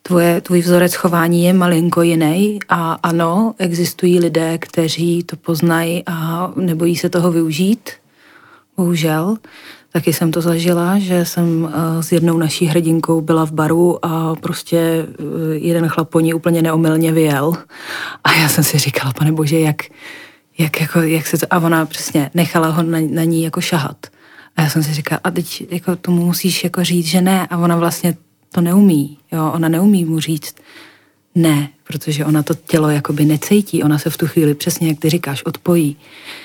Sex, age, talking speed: female, 30-49, 175 wpm